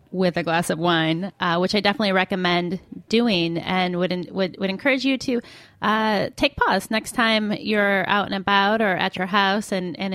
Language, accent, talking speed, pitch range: English, American, 195 wpm, 185-215 Hz